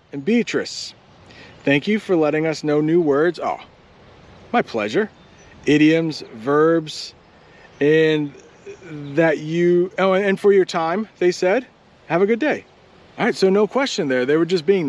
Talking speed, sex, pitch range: 155 wpm, male, 140-190 Hz